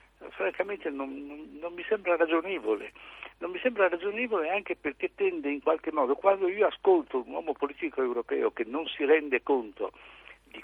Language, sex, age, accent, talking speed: Italian, male, 60-79, native, 170 wpm